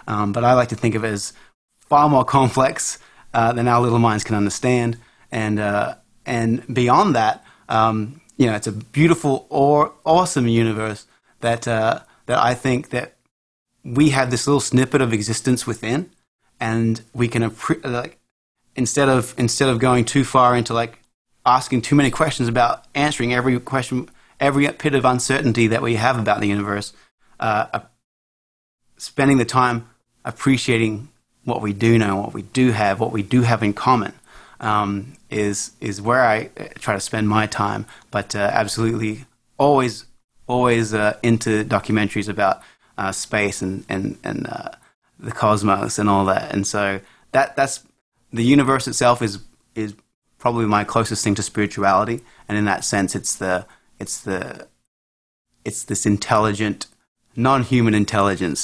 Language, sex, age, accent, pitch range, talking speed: English, male, 30-49, Australian, 105-130 Hz, 160 wpm